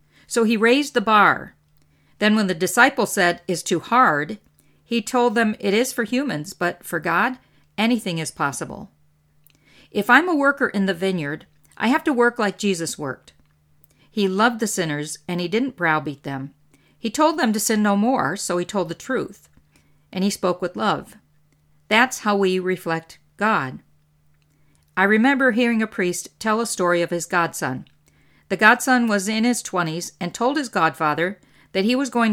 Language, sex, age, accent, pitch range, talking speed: English, female, 50-69, American, 150-225 Hz, 180 wpm